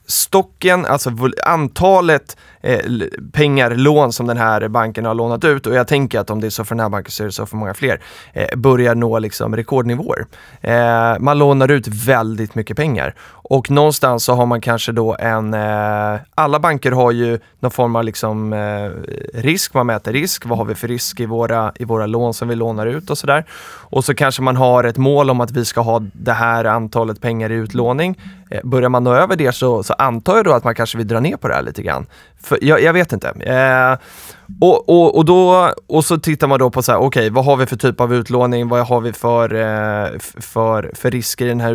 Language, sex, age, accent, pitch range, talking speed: Swedish, male, 20-39, native, 115-135 Hz, 225 wpm